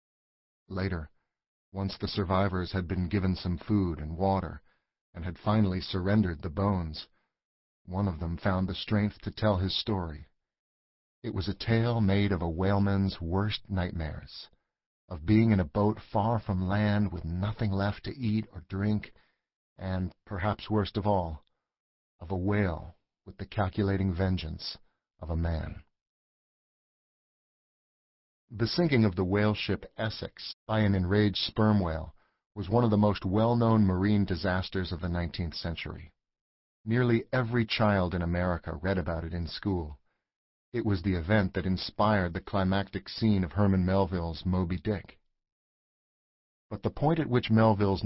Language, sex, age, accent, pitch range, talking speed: English, male, 40-59, American, 90-105 Hz, 150 wpm